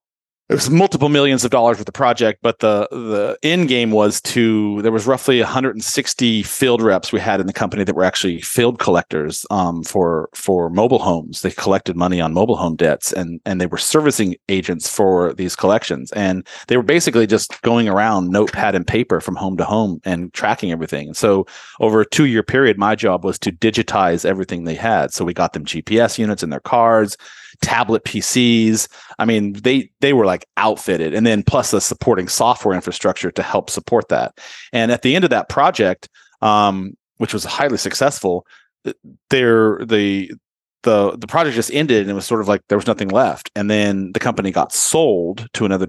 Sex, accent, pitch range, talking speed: male, American, 95-120 Hz, 195 wpm